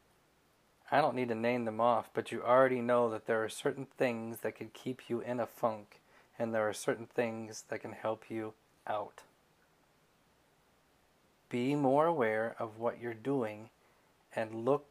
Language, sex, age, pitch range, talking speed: English, male, 30-49, 110-130 Hz, 170 wpm